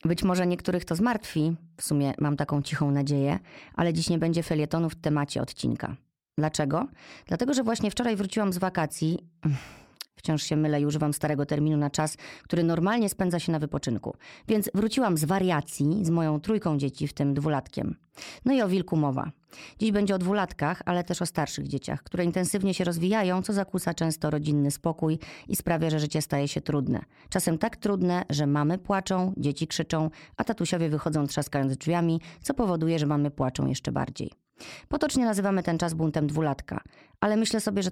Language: Polish